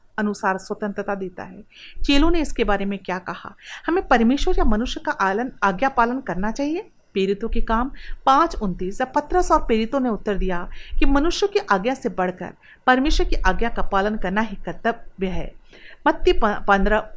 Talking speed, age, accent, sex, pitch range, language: 175 wpm, 40-59, native, female, 200-285 Hz, Hindi